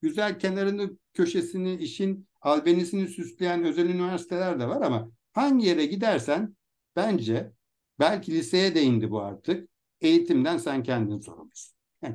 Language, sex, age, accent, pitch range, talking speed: Turkish, male, 60-79, native, 115-185 Hz, 130 wpm